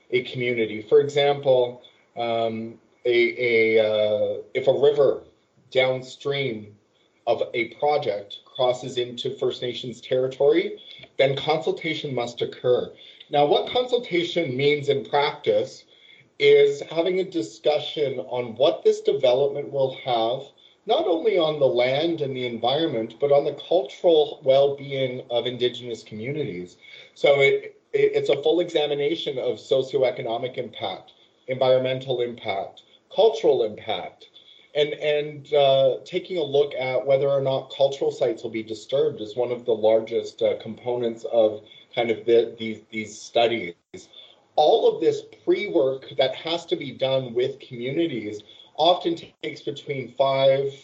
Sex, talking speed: male, 135 wpm